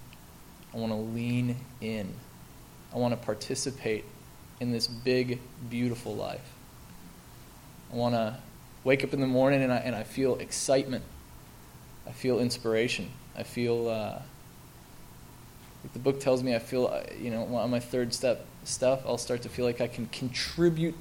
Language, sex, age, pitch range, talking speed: English, male, 20-39, 110-125 Hz, 155 wpm